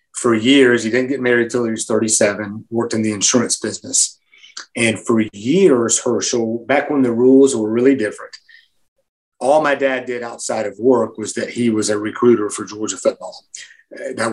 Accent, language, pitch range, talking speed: American, English, 110-120 Hz, 180 wpm